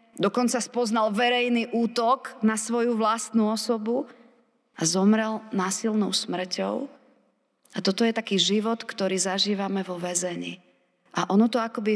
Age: 40-59